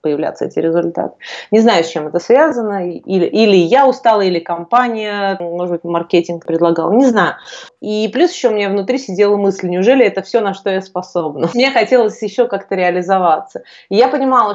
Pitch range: 180-230 Hz